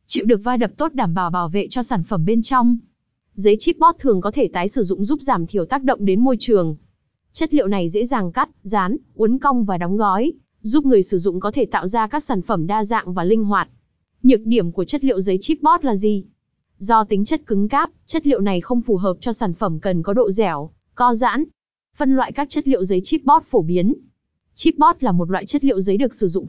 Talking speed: 240 wpm